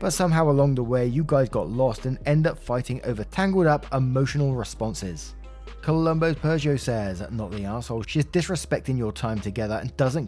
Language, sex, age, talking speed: English, male, 20-39, 180 wpm